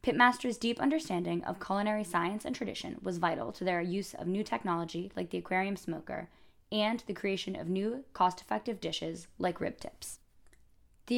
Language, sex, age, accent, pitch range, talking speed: English, female, 10-29, American, 175-235 Hz, 165 wpm